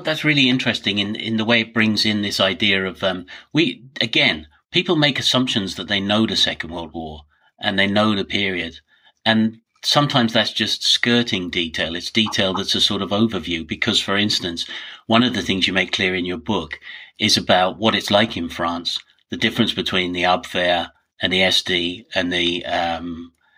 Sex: male